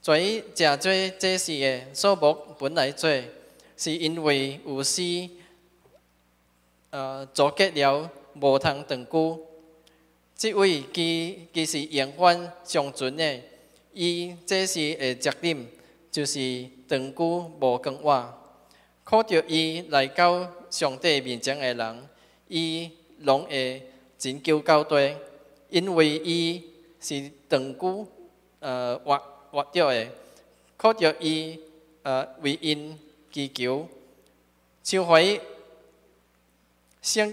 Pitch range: 135-165 Hz